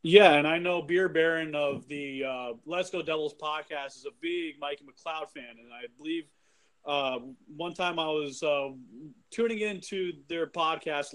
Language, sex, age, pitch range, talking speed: English, male, 30-49, 150-190 Hz, 170 wpm